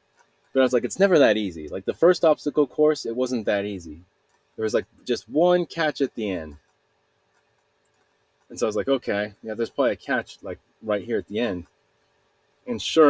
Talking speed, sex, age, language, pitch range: 205 wpm, male, 30-49, English, 100-150 Hz